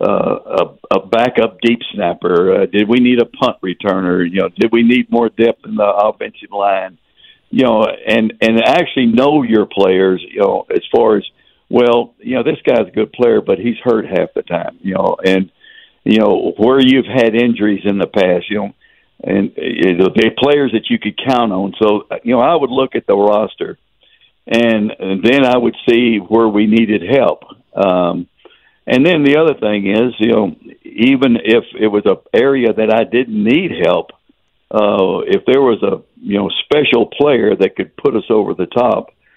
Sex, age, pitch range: male, 60-79, 105-120 Hz